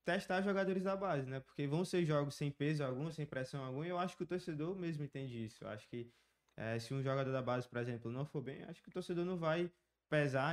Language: Portuguese